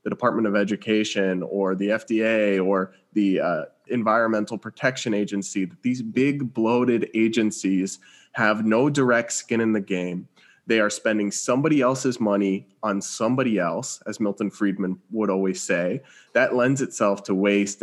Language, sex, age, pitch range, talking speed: English, male, 20-39, 100-130 Hz, 150 wpm